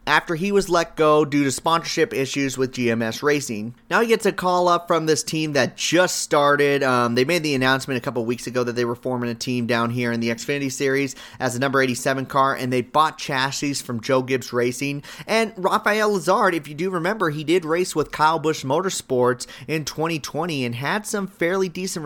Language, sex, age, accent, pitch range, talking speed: English, male, 30-49, American, 135-175 Hz, 215 wpm